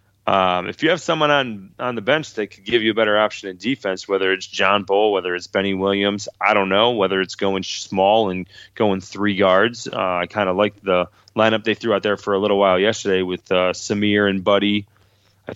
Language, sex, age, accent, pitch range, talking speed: English, male, 20-39, American, 95-110 Hz, 230 wpm